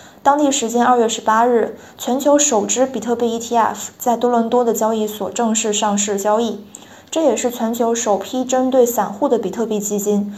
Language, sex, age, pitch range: Chinese, female, 20-39, 215-250 Hz